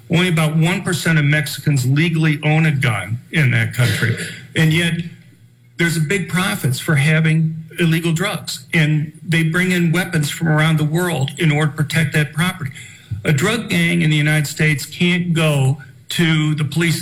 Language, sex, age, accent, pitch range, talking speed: English, male, 50-69, American, 140-165 Hz, 170 wpm